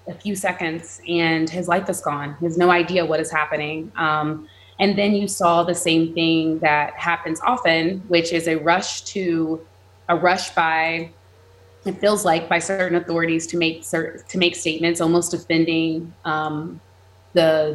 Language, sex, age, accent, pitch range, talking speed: English, female, 20-39, American, 160-200 Hz, 170 wpm